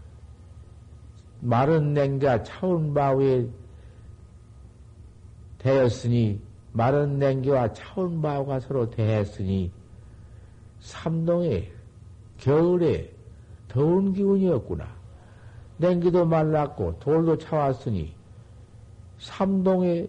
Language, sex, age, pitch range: Korean, male, 50-69, 105-140 Hz